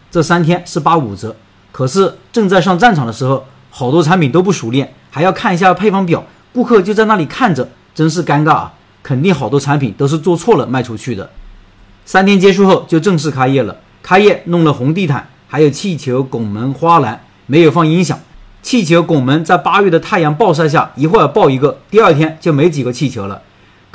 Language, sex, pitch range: Chinese, male, 130-185 Hz